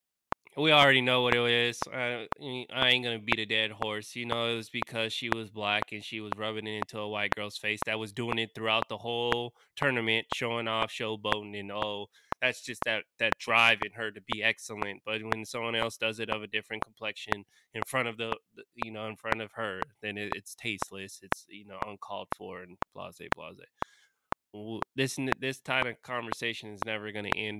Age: 20-39